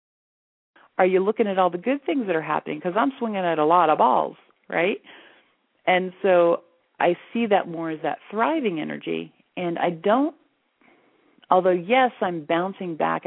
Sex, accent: female, American